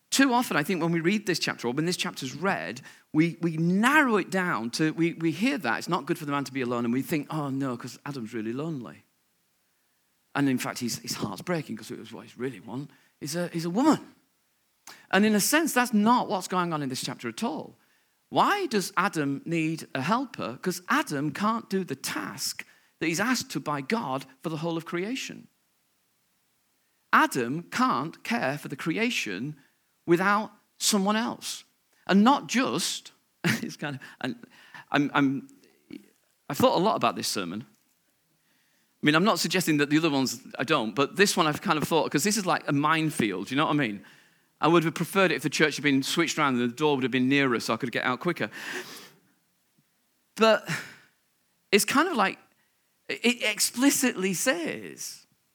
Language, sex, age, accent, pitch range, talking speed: English, male, 40-59, British, 145-205 Hz, 195 wpm